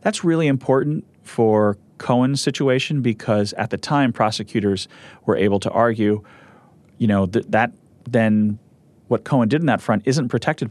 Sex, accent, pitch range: male, American, 95-120 Hz